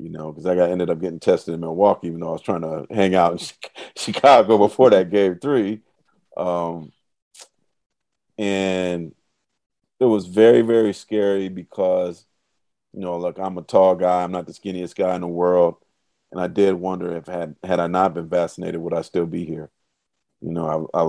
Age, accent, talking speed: 40-59, American, 195 wpm